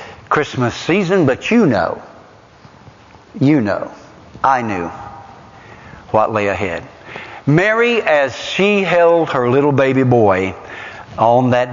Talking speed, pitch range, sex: 115 wpm, 120-180 Hz, male